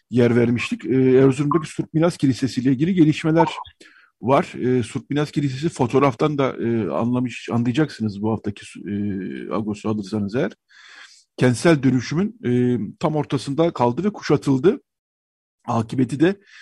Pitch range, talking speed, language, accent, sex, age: 110-155 Hz, 125 wpm, Turkish, native, male, 50-69